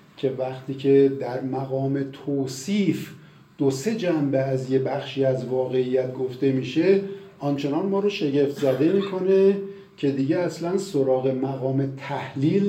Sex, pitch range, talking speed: male, 130-175 Hz, 130 wpm